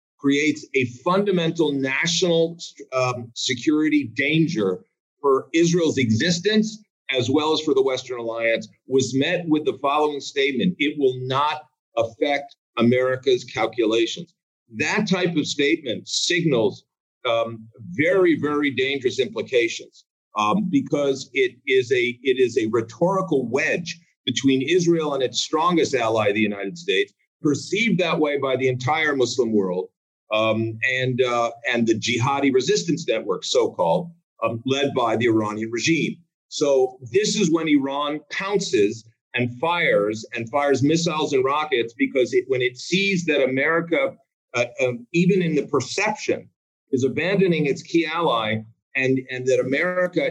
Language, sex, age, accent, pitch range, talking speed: English, male, 50-69, American, 130-185 Hz, 140 wpm